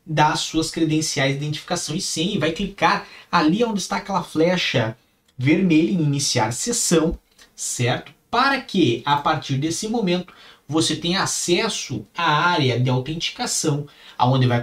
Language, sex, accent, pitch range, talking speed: Portuguese, male, Brazilian, 130-190 Hz, 145 wpm